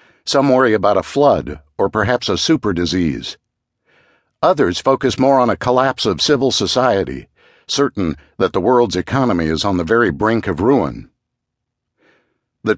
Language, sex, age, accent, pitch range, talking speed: English, male, 60-79, American, 95-140 Hz, 145 wpm